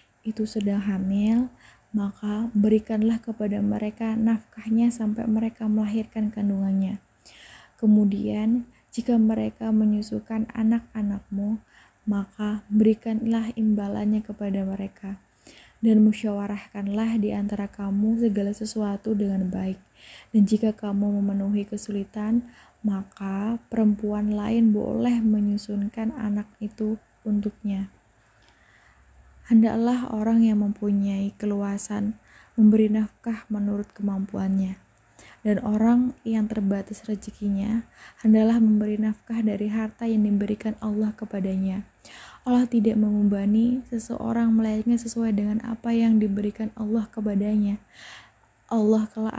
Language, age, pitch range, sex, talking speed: Indonesian, 20-39, 205-225 Hz, female, 95 wpm